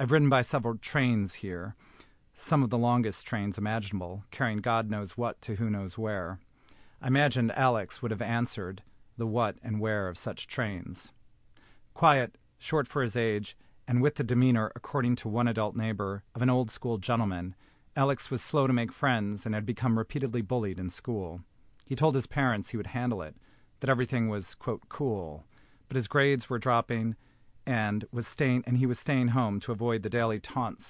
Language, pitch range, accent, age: English, 105-125 Hz, American, 40-59